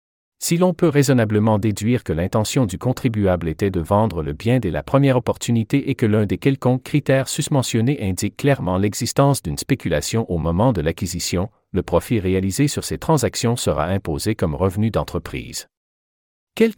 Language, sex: French, male